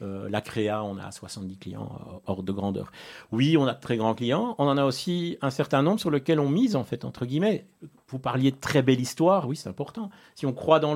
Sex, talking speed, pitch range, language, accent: male, 240 wpm, 110-140 Hz, French, French